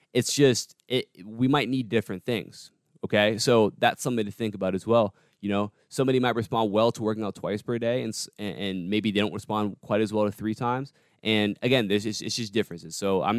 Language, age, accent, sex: English, 20-39, American, male